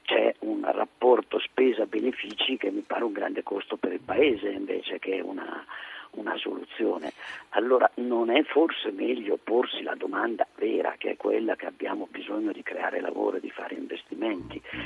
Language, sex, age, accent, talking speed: Italian, male, 50-69, native, 165 wpm